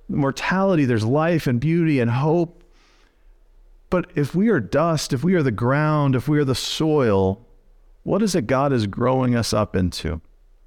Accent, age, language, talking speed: American, 40-59, English, 175 wpm